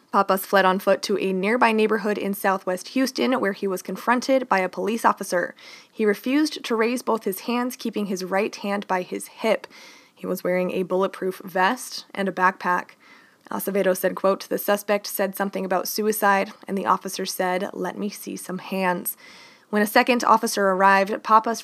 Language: English